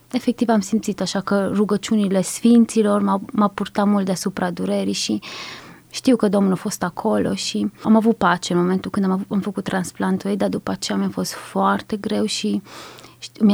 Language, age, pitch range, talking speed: Romanian, 20-39, 190-215 Hz, 175 wpm